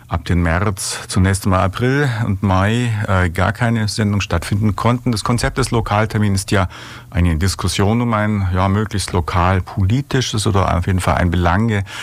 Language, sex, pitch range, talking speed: German, male, 90-115 Hz, 170 wpm